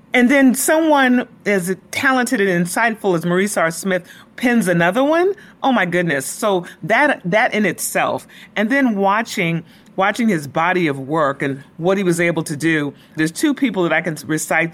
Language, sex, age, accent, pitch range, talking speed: English, female, 30-49, American, 150-195 Hz, 180 wpm